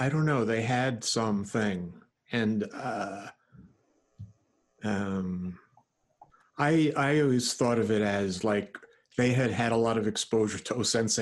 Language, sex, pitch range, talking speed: English, male, 95-120 Hz, 140 wpm